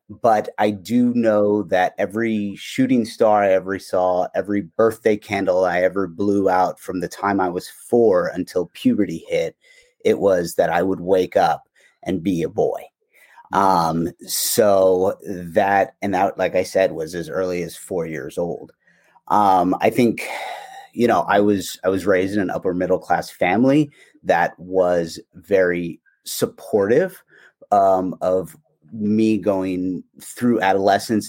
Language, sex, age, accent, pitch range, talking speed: English, male, 30-49, American, 95-115 Hz, 150 wpm